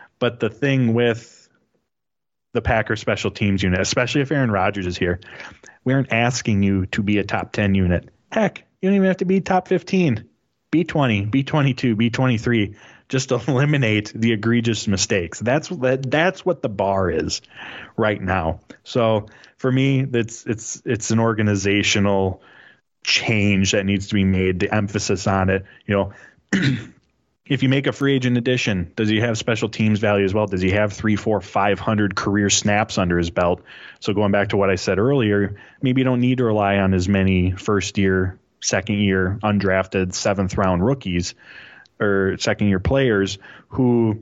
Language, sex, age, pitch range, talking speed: English, male, 20-39, 95-120 Hz, 170 wpm